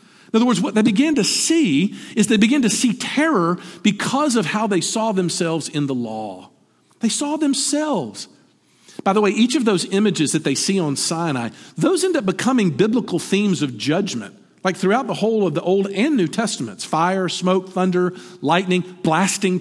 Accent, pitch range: American, 175-245 Hz